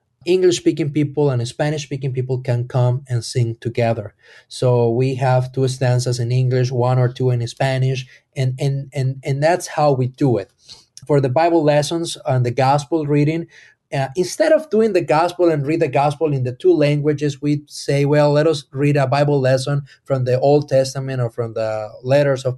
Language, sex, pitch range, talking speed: English, male, 130-160 Hz, 190 wpm